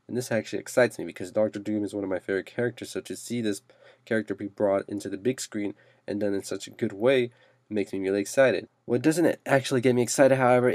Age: 20-39